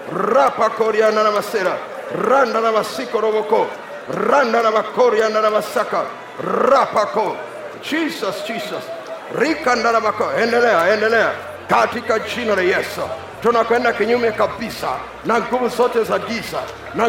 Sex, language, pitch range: male, Swahili, 220-255 Hz